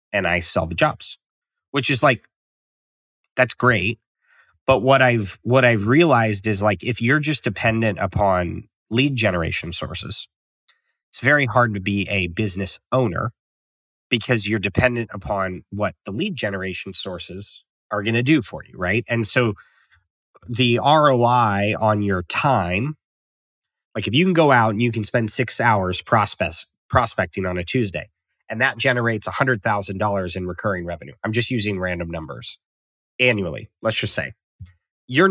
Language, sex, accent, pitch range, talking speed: English, male, American, 100-130 Hz, 155 wpm